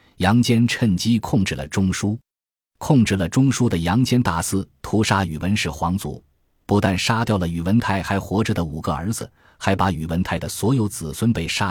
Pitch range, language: 85-115 Hz, Chinese